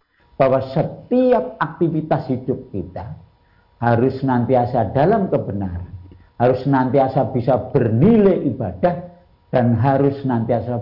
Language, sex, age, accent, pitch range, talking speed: Indonesian, male, 50-69, native, 115-165 Hz, 95 wpm